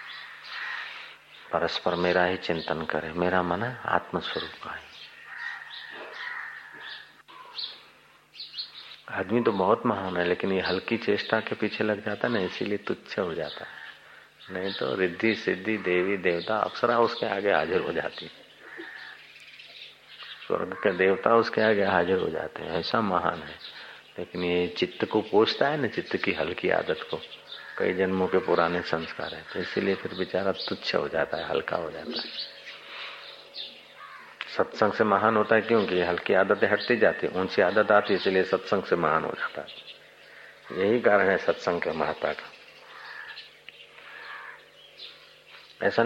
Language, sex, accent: Hindi, male, native